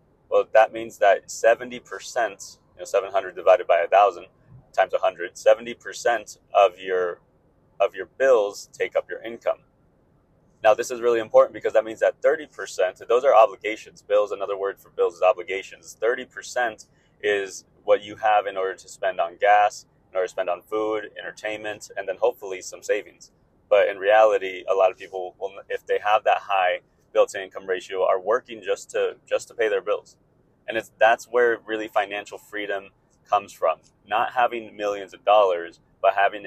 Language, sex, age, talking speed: English, male, 30-49, 180 wpm